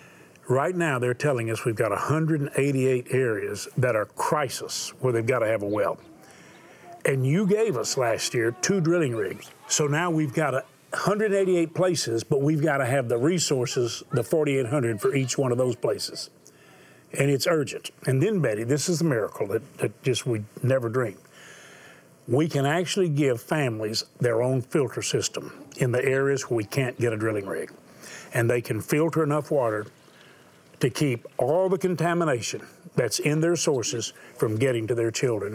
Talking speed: 175 wpm